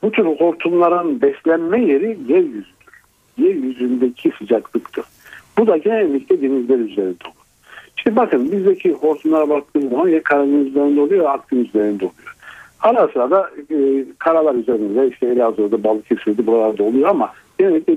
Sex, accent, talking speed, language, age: male, native, 120 wpm, Turkish, 60-79